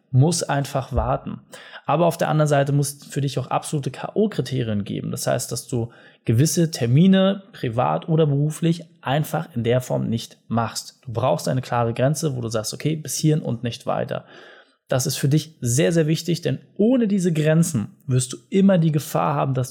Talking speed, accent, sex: 190 wpm, German, male